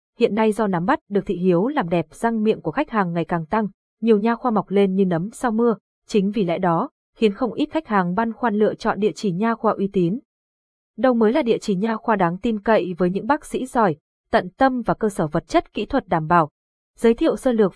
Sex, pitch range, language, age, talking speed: female, 190-235 Hz, Vietnamese, 20-39, 255 wpm